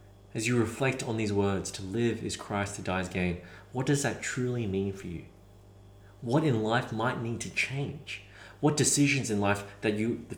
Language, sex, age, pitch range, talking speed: English, male, 30-49, 100-115 Hz, 200 wpm